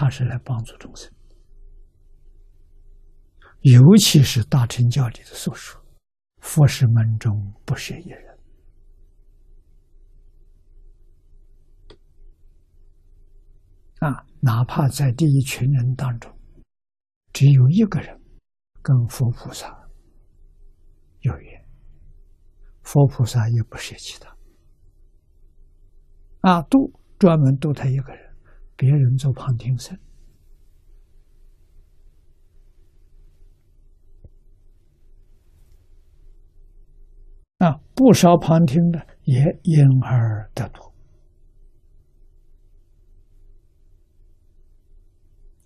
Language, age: Chinese, 60-79